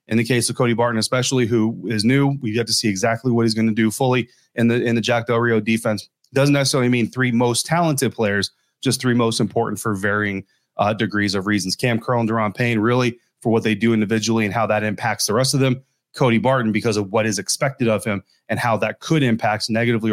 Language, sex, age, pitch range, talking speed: English, male, 30-49, 110-135 Hz, 240 wpm